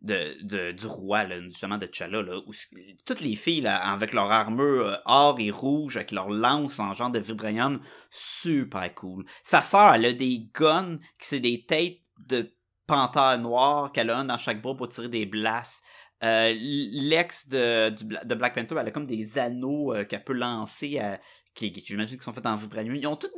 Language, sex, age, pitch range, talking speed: French, male, 30-49, 115-165 Hz, 205 wpm